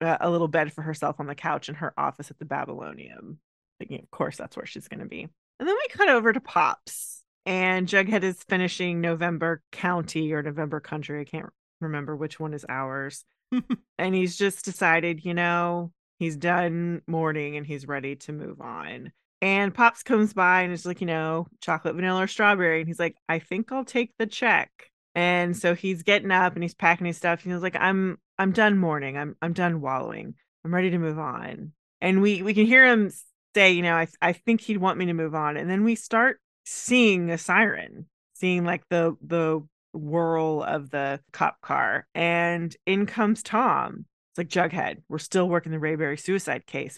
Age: 20-39